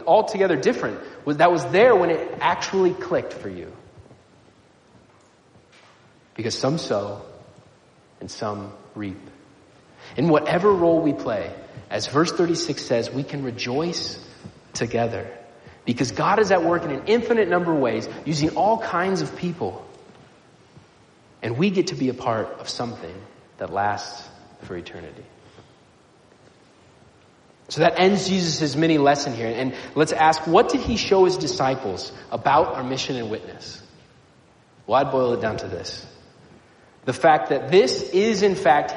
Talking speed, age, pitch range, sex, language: 145 wpm, 30-49, 120-180 Hz, male, English